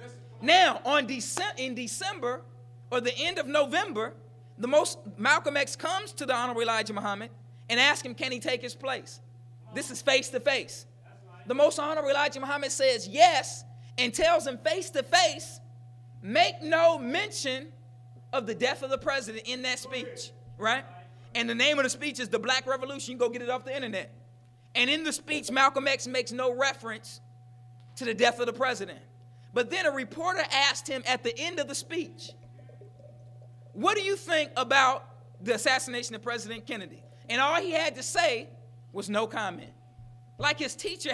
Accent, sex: American, male